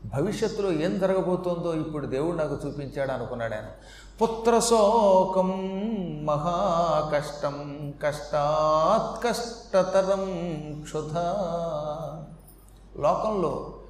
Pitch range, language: 150-220 Hz, Telugu